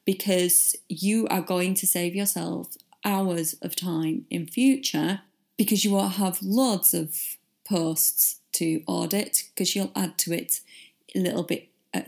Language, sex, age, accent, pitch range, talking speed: English, female, 30-49, British, 170-230 Hz, 150 wpm